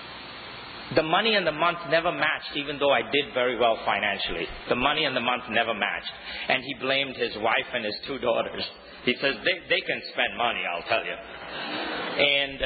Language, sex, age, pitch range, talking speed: English, male, 50-69, 125-150 Hz, 195 wpm